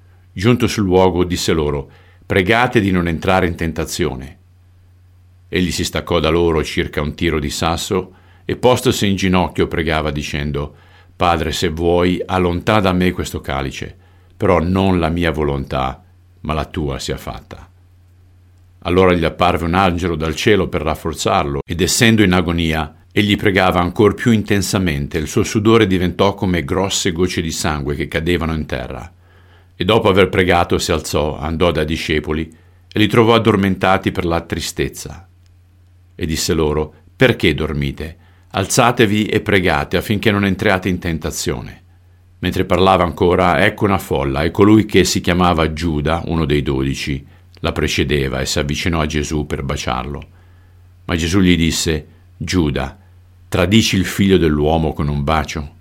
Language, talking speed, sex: Italian, 150 wpm, male